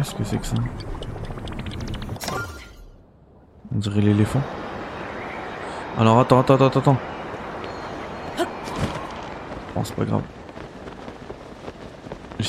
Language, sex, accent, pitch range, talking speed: French, male, French, 105-135 Hz, 85 wpm